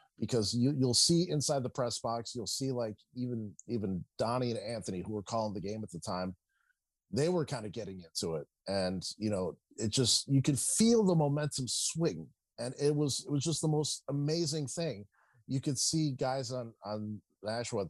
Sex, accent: male, American